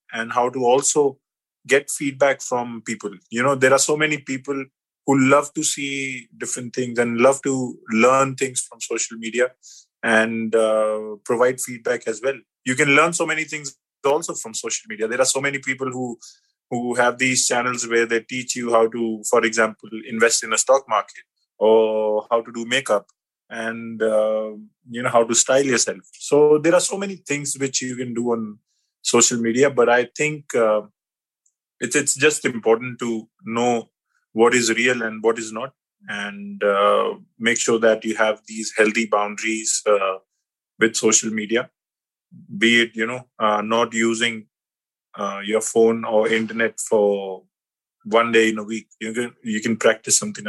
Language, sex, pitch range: English, male, 110-130 Hz